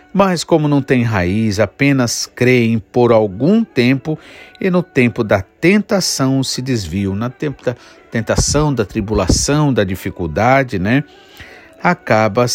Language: Portuguese